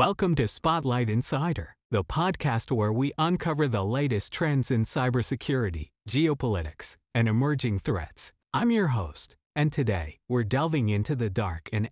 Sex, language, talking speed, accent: male, English, 145 wpm, American